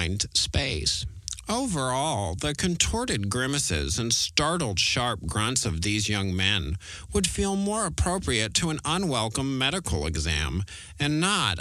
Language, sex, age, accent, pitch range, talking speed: English, male, 50-69, American, 95-135 Hz, 125 wpm